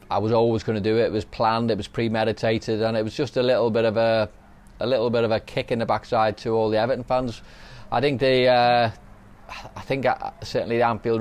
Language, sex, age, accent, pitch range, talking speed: English, male, 20-39, British, 105-115 Hz, 235 wpm